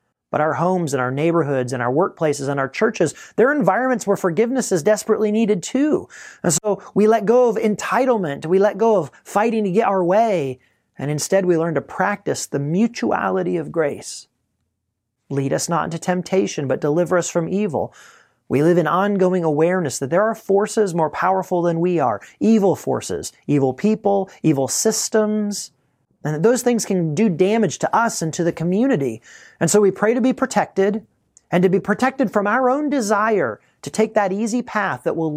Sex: male